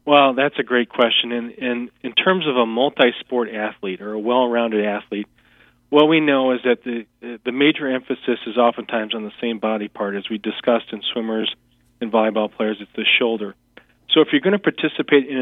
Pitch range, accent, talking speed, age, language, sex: 110-130 Hz, American, 200 wpm, 40-59, English, male